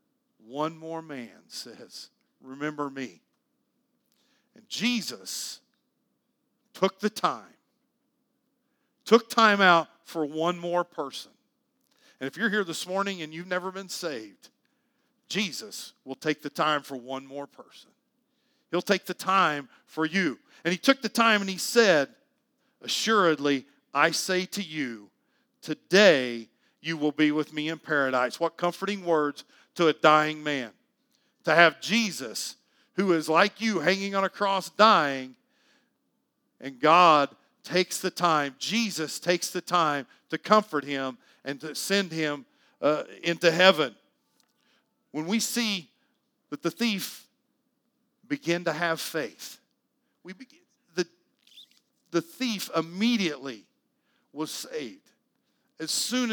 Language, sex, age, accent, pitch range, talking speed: English, male, 50-69, American, 155-240 Hz, 130 wpm